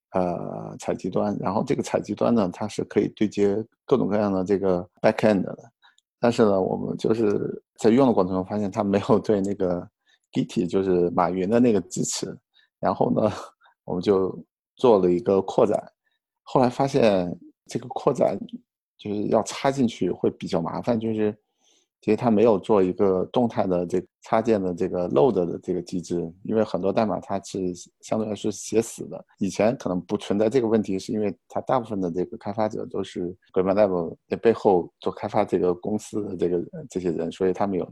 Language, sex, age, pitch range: Chinese, male, 50-69, 90-110 Hz